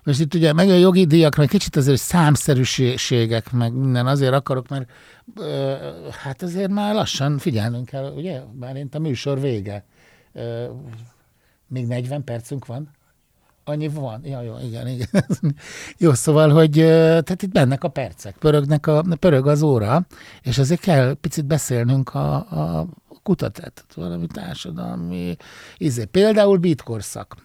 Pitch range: 110-150 Hz